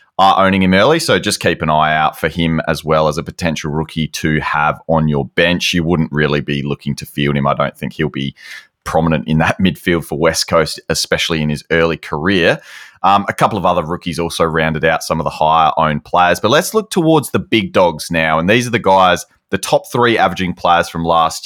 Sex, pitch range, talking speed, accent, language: male, 80-95 Hz, 230 wpm, Australian, English